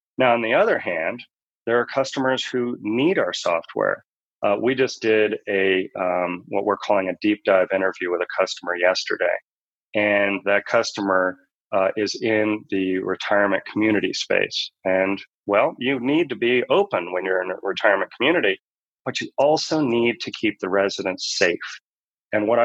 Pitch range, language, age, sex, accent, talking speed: 100-125 Hz, English, 30-49, male, American, 165 wpm